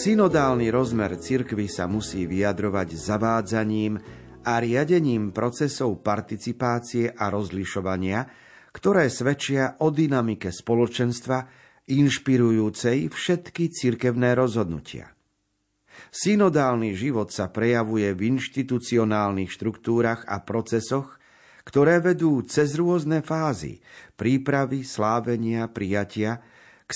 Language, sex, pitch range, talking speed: Slovak, male, 105-135 Hz, 90 wpm